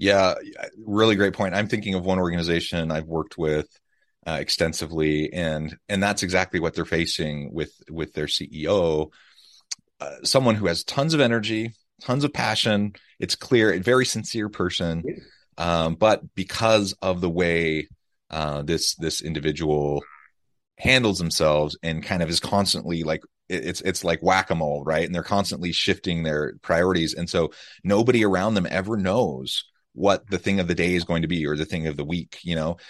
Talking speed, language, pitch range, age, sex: 175 wpm, English, 75-95 Hz, 30-49, male